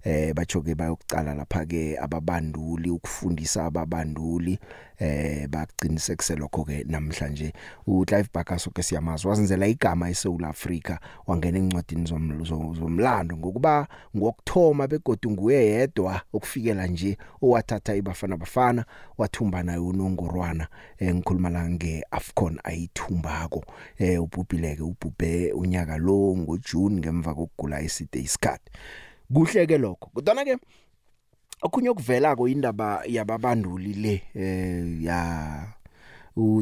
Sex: male